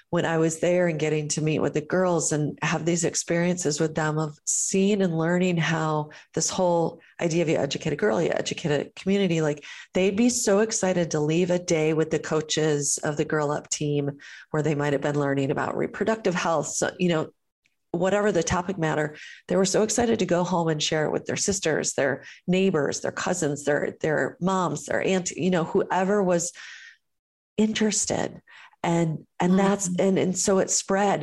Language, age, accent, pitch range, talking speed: English, 40-59, American, 160-200 Hz, 190 wpm